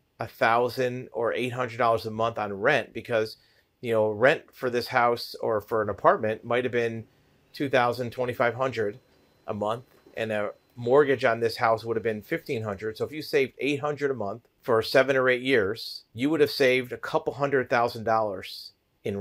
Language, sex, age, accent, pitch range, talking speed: English, male, 40-59, American, 110-130 Hz, 185 wpm